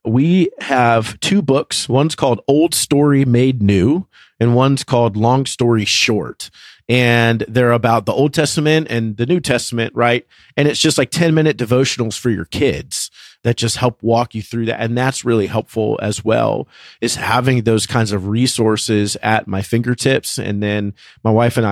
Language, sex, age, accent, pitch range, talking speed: English, male, 30-49, American, 110-135 Hz, 175 wpm